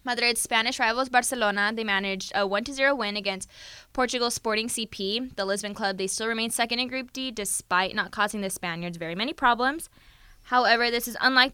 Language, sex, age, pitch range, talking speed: English, female, 10-29, 195-250 Hz, 180 wpm